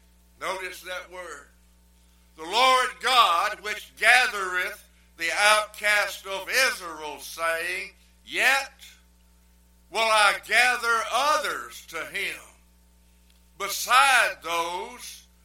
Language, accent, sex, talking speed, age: English, American, male, 85 wpm, 60-79